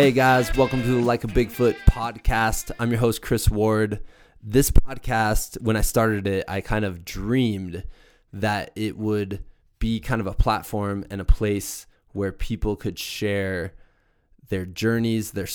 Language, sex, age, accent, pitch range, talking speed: English, male, 20-39, American, 100-115 Hz, 160 wpm